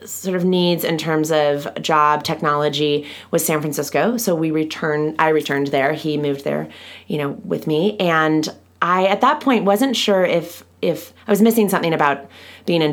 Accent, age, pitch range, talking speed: American, 30-49, 145-165 Hz, 185 wpm